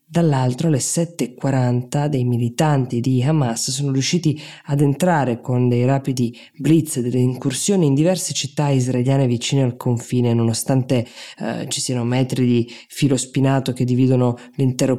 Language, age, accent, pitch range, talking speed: Italian, 20-39, native, 125-140 Hz, 140 wpm